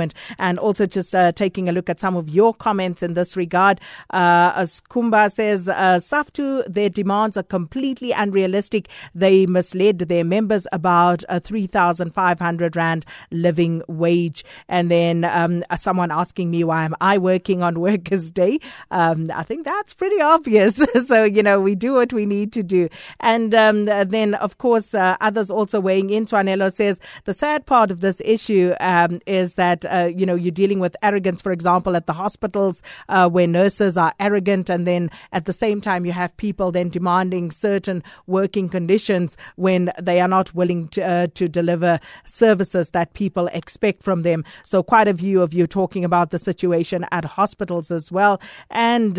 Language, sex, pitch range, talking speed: English, female, 175-200 Hz, 180 wpm